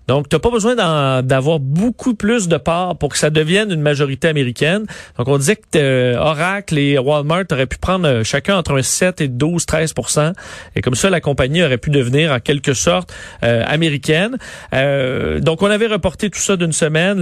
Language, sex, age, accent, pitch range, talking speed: French, male, 40-59, Canadian, 135-170 Hz, 200 wpm